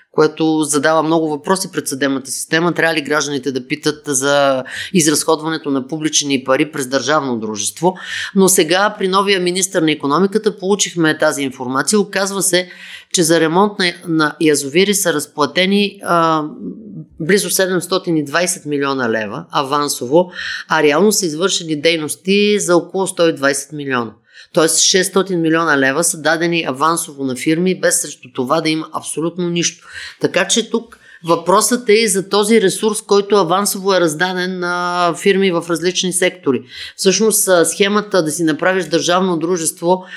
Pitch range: 155-190 Hz